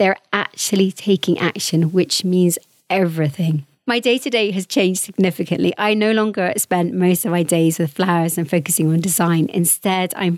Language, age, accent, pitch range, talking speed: English, 30-49, British, 165-190 Hz, 160 wpm